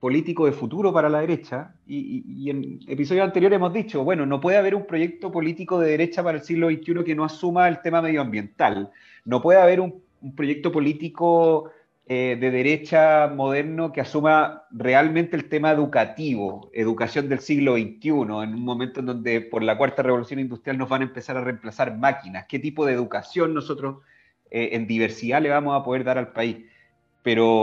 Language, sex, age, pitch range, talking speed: Spanish, male, 40-59, 120-160 Hz, 190 wpm